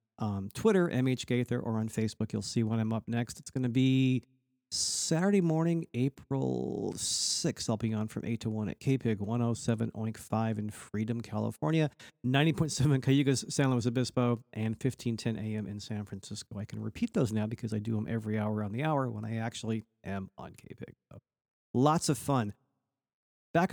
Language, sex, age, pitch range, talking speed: English, male, 40-59, 110-135 Hz, 180 wpm